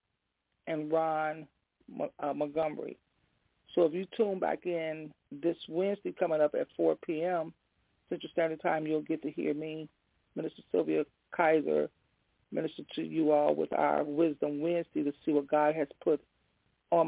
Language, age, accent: English, 40-59, American